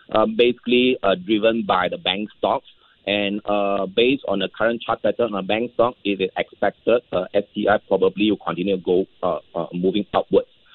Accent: Malaysian